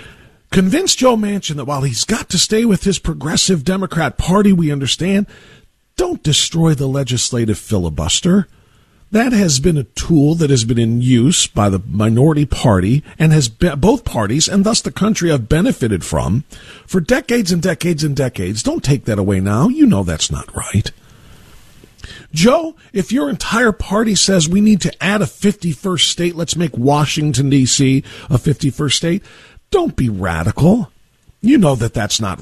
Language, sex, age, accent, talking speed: English, male, 50-69, American, 165 wpm